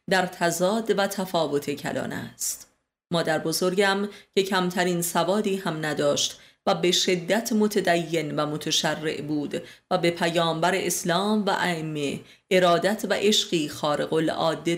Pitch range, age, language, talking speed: 160-195 Hz, 30-49, Persian, 125 wpm